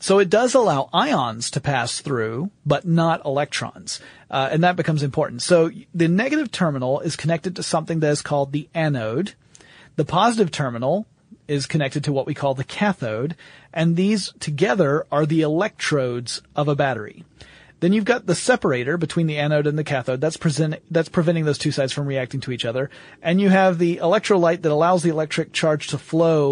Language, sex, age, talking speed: English, male, 40-59, 190 wpm